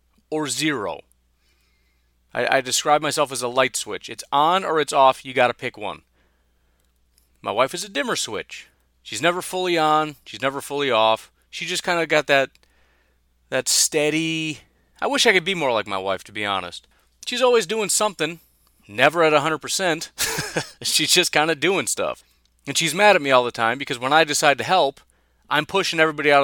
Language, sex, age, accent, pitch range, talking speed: English, male, 30-49, American, 95-155 Hz, 195 wpm